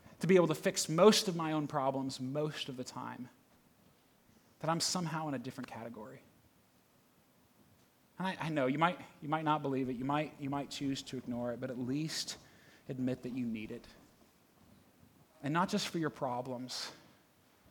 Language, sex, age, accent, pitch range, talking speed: English, male, 30-49, American, 130-175 Hz, 185 wpm